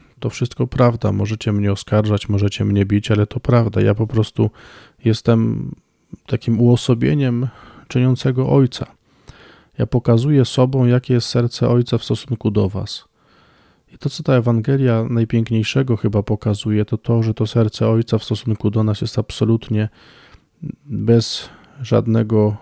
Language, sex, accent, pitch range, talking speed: Polish, male, native, 105-120 Hz, 140 wpm